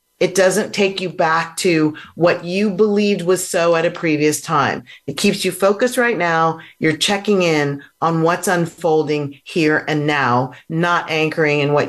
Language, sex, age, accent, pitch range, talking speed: English, female, 40-59, American, 150-195 Hz, 170 wpm